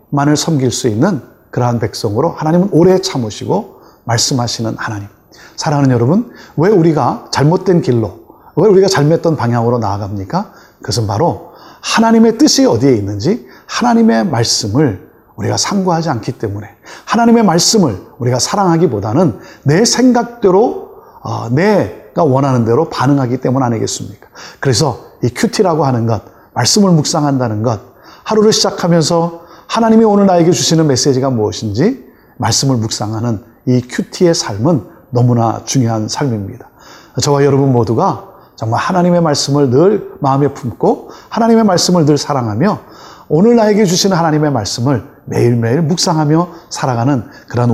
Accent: native